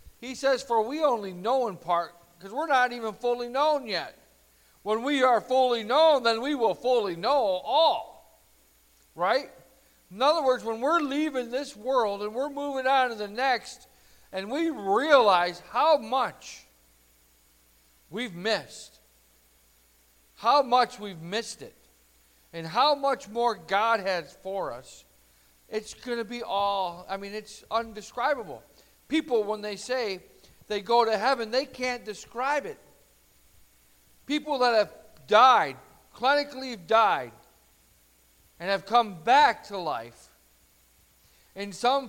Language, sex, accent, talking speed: English, male, American, 140 wpm